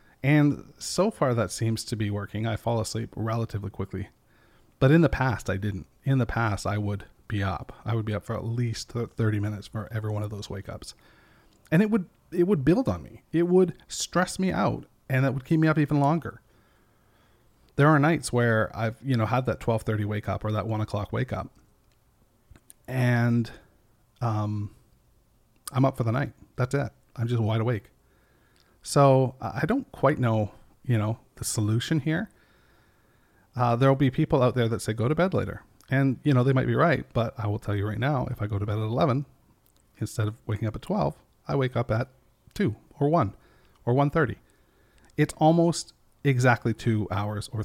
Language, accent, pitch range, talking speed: English, American, 110-135 Hz, 200 wpm